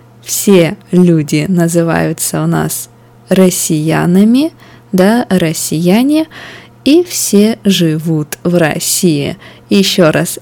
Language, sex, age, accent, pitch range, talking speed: Russian, female, 20-39, native, 165-200 Hz, 85 wpm